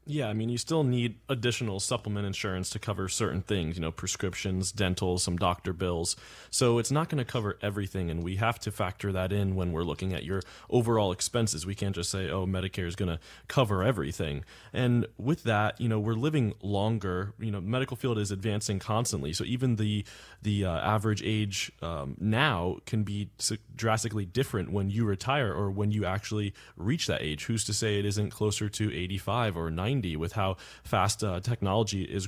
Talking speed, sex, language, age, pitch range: 195 wpm, male, English, 20-39, 95-115 Hz